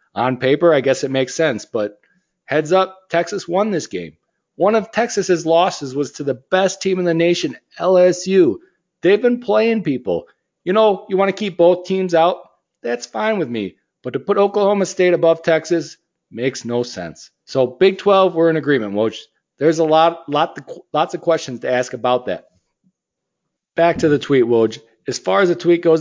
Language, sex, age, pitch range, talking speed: English, male, 40-59, 130-180 Hz, 190 wpm